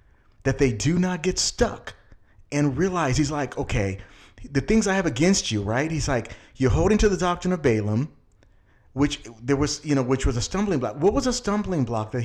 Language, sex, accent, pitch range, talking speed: English, male, American, 120-180 Hz, 210 wpm